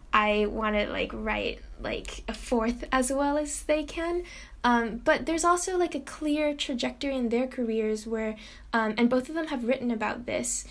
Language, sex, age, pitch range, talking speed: English, female, 10-29, 215-245 Hz, 190 wpm